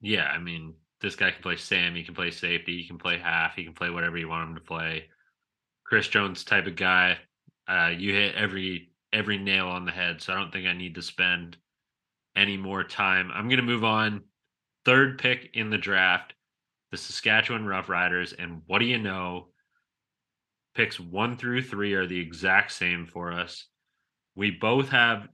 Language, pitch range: English, 90-110 Hz